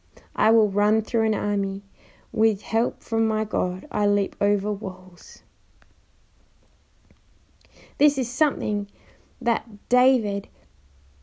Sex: female